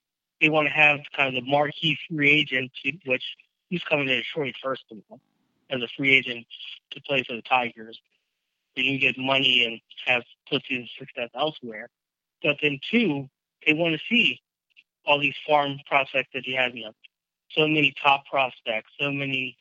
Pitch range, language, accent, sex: 130-155 Hz, English, American, male